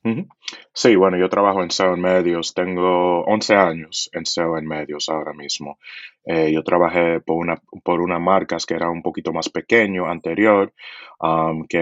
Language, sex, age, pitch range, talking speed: Spanish, male, 20-39, 80-95 Hz, 165 wpm